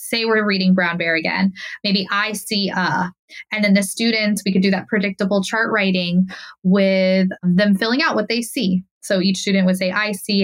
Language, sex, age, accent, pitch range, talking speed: English, female, 20-39, American, 190-225 Hz, 200 wpm